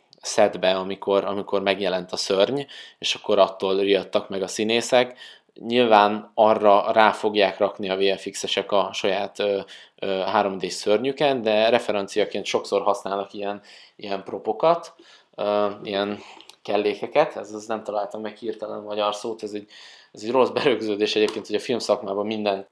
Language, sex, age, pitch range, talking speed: Hungarian, male, 20-39, 100-110 Hz, 145 wpm